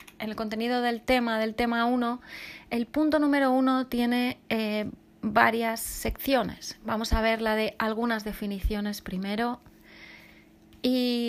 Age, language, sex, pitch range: 30-49, Spanish, female, 210-250 Hz